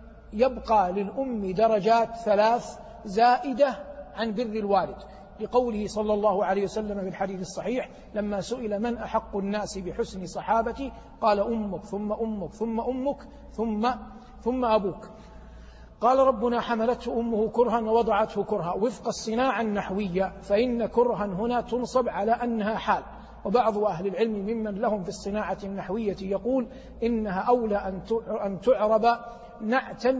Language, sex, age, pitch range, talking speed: Arabic, male, 50-69, 205-235 Hz, 125 wpm